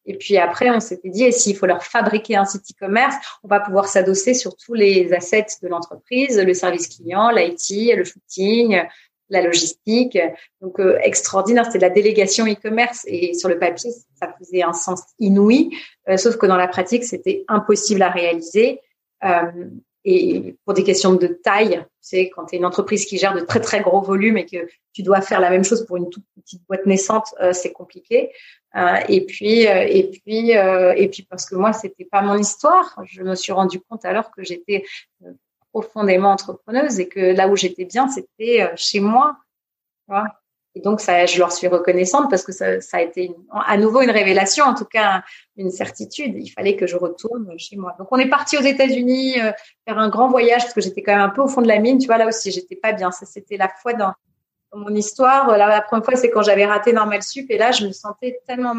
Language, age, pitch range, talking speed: French, 30-49, 185-235 Hz, 225 wpm